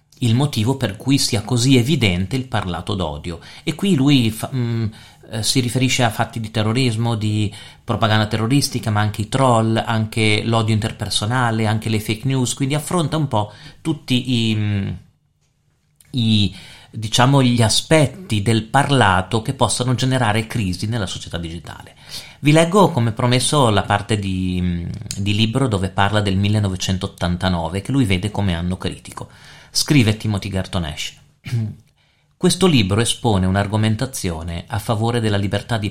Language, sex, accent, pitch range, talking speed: Italian, male, native, 105-130 Hz, 140 wpm